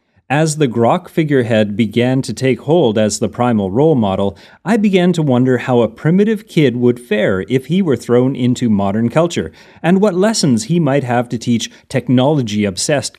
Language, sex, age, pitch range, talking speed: English, male, 30-49, 115-150 Hz, 180 wpm